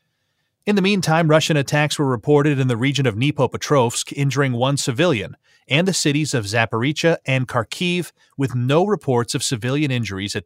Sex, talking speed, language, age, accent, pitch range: male, 165 wpm, English, 30-49, American, 120-150 Hz